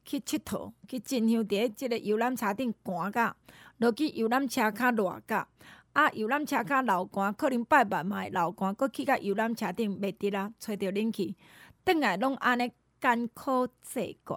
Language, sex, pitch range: Chinese, female, 210-280 Hz